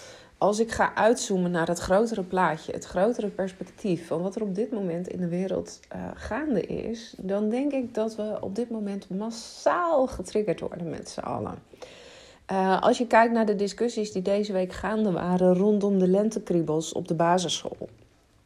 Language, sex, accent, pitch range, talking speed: Dutch, female, Dutch, 170-210 Hz, 180 wpm